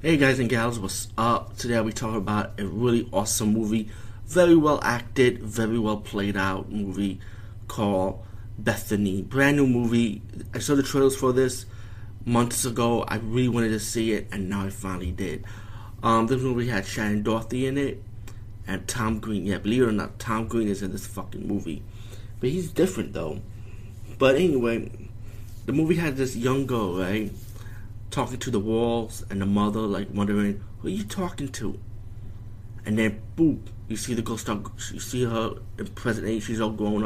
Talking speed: 185 wpm